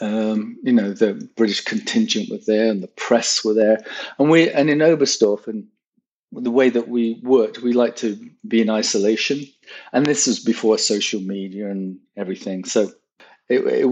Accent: British